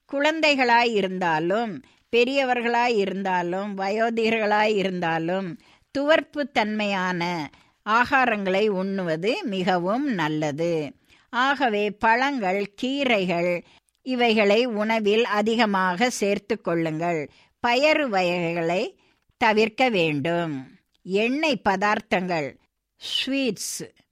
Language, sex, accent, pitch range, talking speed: Tamil, female, native, 185-245 Hz, 60 wpm